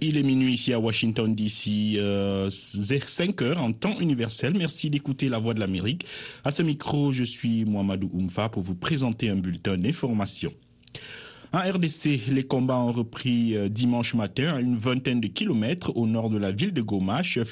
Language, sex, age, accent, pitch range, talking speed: Italian, male, 50-69, French, 105-135 Hz, 180 wpm